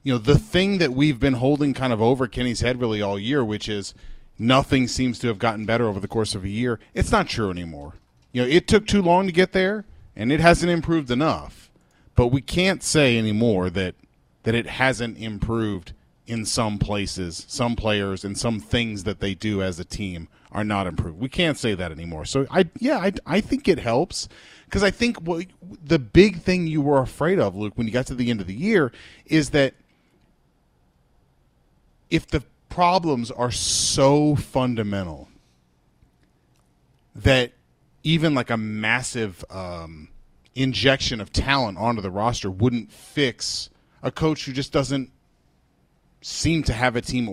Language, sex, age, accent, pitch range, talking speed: English, male, 30-49, American, 100-140 Hz, 180 wpm